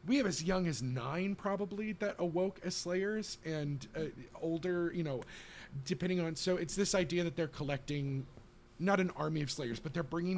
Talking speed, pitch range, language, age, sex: 190 wpm, 120-170 Hz, English, 30-49, male